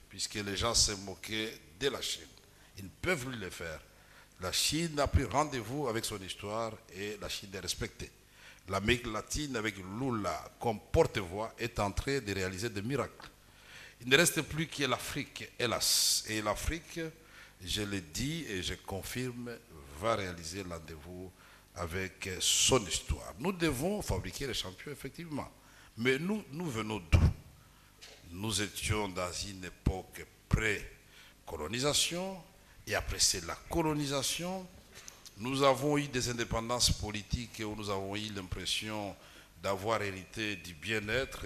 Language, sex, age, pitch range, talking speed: French, male, 60-79, 95-130 Hz, 140 wpm